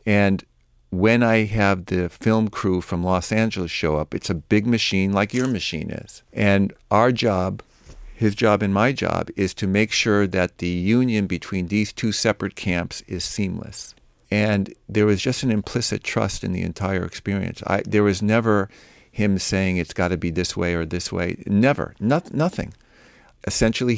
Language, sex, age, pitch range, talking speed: English, male, 50-69, 90-110 Hz, 175 wpm